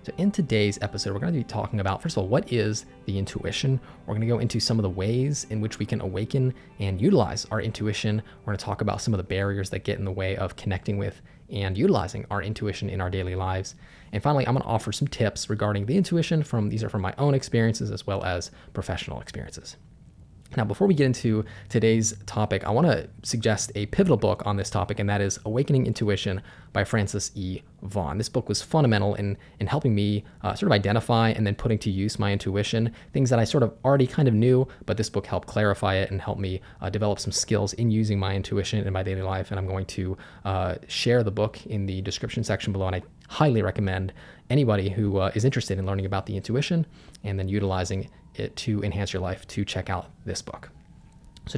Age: 20-39